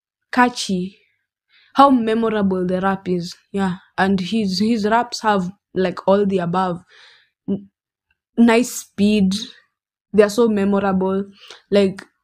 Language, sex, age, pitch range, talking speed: English, female, 10-29, 185-215 Hz, 115 wpm